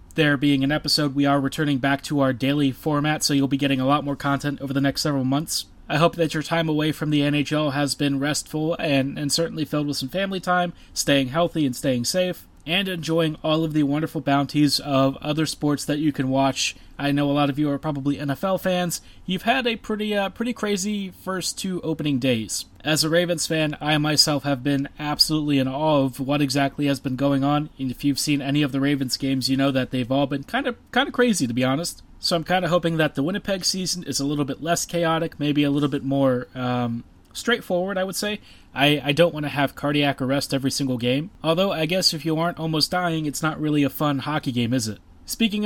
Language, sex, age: English, male, 20-39